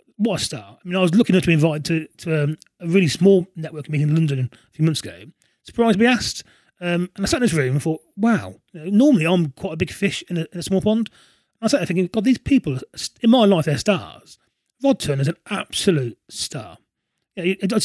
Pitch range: 155-210 Hz